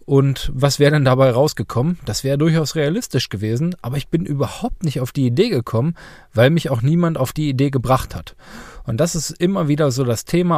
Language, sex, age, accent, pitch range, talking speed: German, male, 40-59, German, 120-155 Hz, 210 wpm